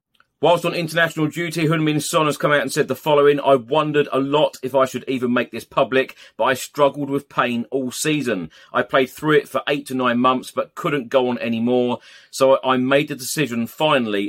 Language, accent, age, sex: English, British, 40-59, male